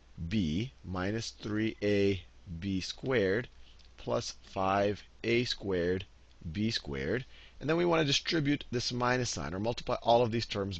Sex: male